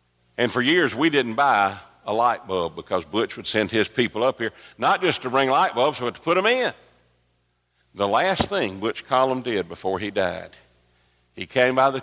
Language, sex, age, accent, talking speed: English, male, 60-79, American, 205 wpm